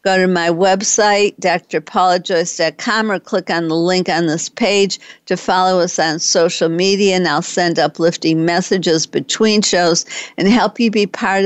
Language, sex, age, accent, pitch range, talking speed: English, female, 50-69, American, 165-195 Hz, 160 wpm